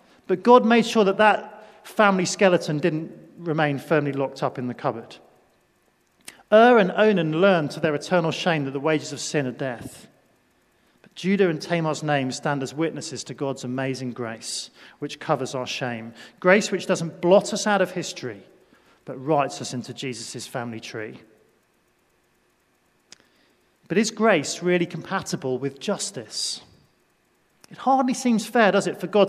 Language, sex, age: English, male, 40-59